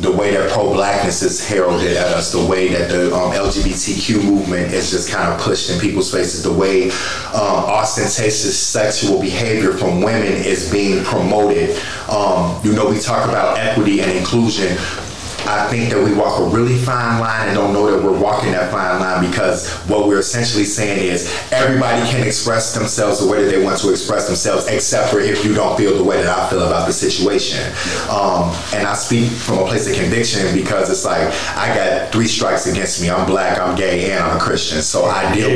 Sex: male